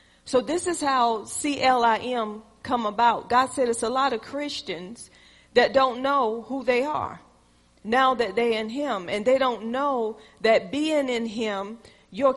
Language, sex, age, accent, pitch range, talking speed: English, female, 40-59, American, 235-290 Hz, 165 wpm